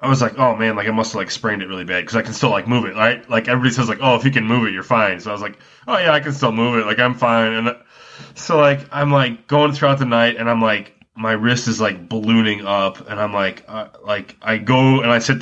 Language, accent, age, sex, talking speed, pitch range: English, American, 20-39, male, 295 wpm, 105-130 Hz